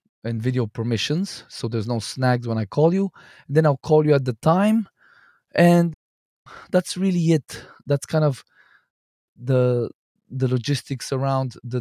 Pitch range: 125-145 Hz